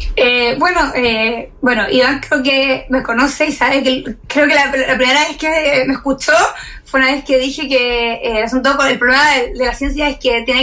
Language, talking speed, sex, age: Spanish, 225 wpm, female, 20-39